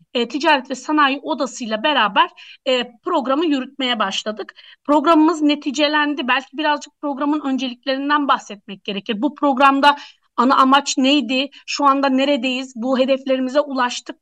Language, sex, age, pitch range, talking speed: Turkish, female, 30-49, 235-305 Hz, 120 wpm